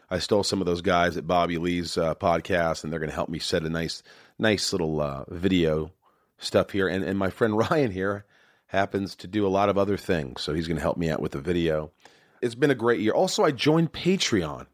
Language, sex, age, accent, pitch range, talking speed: English, male, 40-59, American, 80-115 Hz, 240 wpm